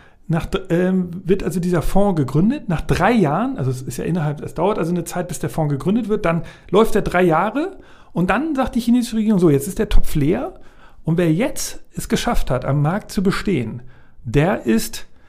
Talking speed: 210 wpm